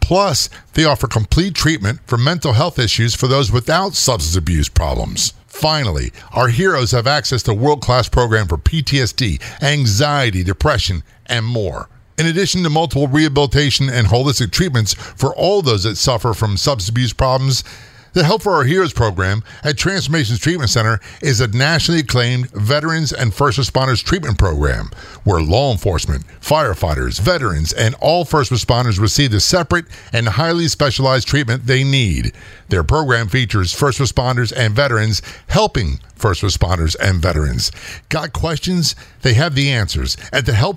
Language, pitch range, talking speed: English, 105-145 Hz, 155 wpm